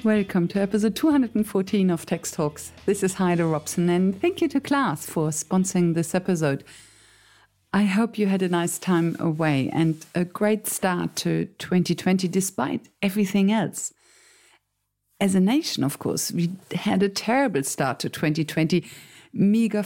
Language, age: English, 50-69